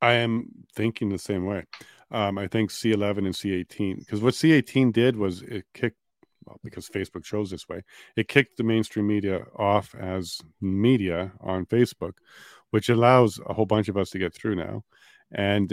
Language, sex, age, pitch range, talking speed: English, male, 40-59, 95-110 Hz, 180 wpm